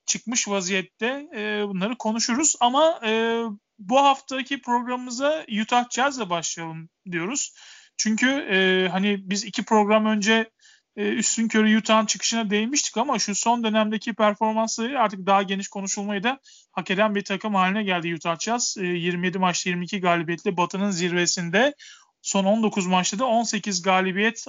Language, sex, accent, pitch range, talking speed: Turkish, male, native, 195-235 Hz, 125 wpm